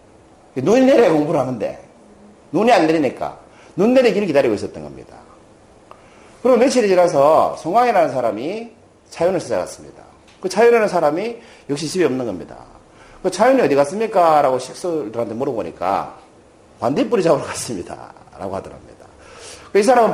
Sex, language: male, Korean